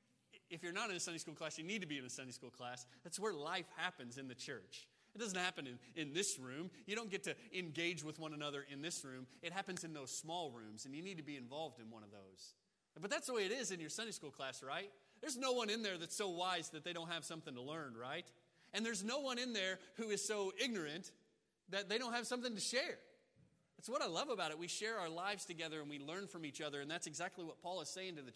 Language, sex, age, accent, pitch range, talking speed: English, male, 30-49, American, 150-205 Hz, 275 wpm